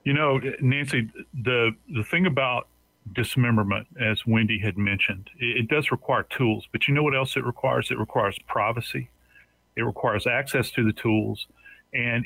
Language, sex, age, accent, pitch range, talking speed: English, male, 40-59, American, 110-145 Hz, 165 wpm